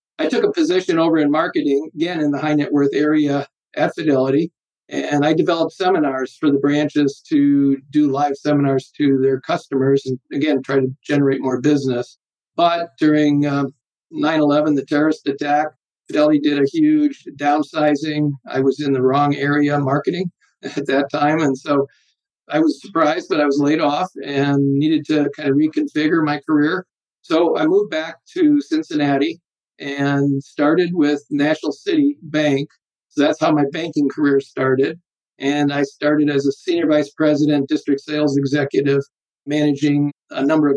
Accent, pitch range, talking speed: American, 140-155 Hz, 165 wpm